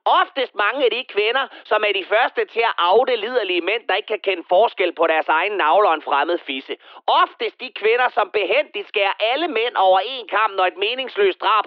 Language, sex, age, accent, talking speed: Danish, male, 30-49, native, 220 wpm